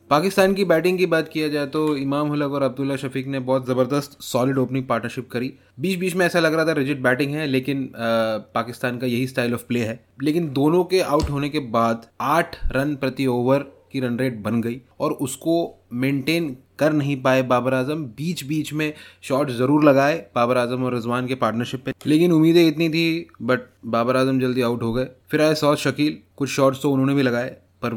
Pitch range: 120-145 Hz